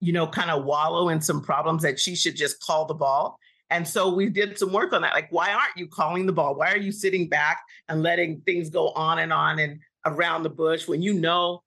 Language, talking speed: English, 250 wpm